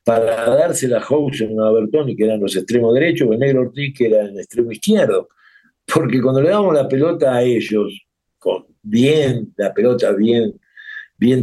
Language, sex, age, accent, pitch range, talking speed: Spanish, male, 60-79, Argentinian, 115-190 Hz, 185 wpm